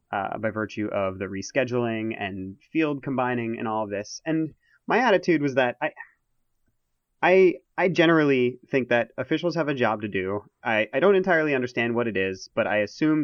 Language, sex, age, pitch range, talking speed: English, male, 30-49, 105-135 Hz, 185 wpm